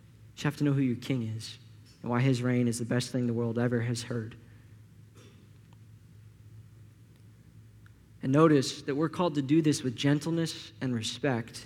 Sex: male